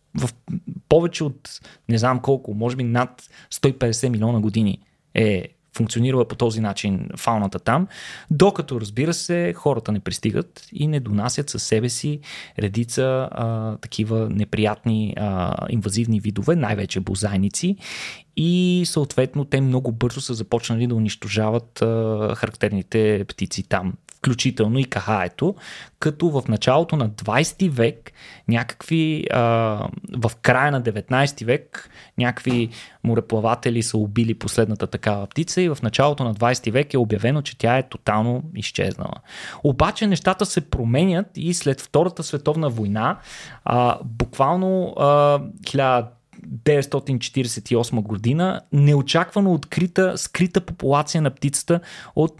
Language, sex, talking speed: Bulgarian, male, 125 wpm